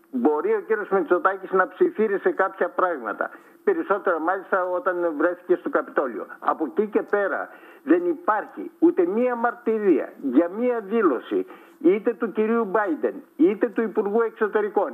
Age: 60-79